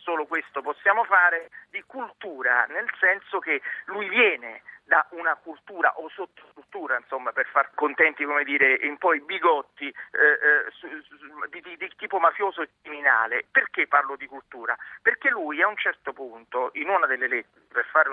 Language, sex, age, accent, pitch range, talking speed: Italian, male, 40-59, native, 155-225 Hz, 160 wpm